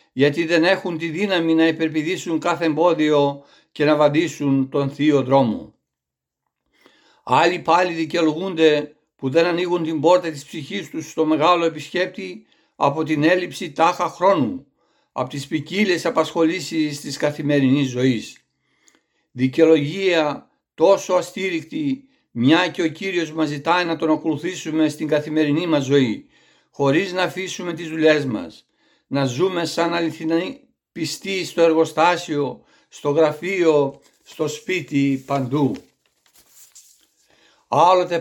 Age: 60-79